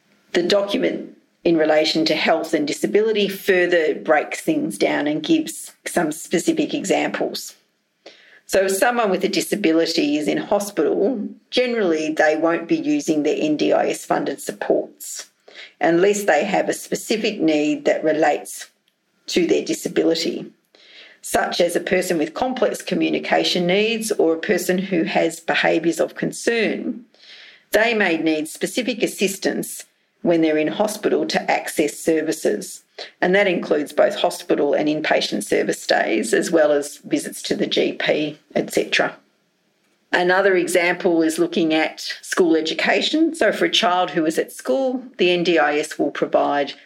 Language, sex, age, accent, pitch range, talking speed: English, female, 50-69, Australian, 160-225 Hz, 140 wpm